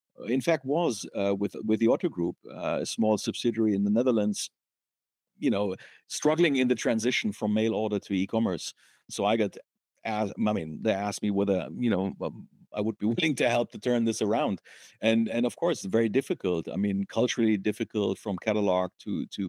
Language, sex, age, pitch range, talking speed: English, male, 50-69, 95-115 Hz, 195 wpm